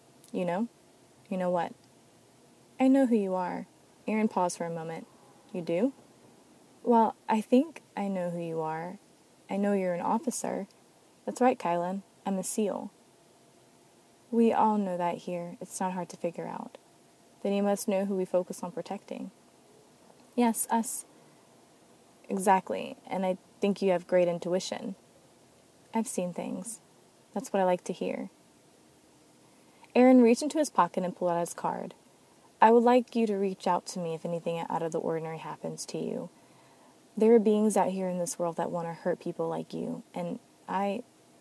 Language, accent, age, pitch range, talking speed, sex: English, American, 20-39, 175-225 Hz, 175 wpm, female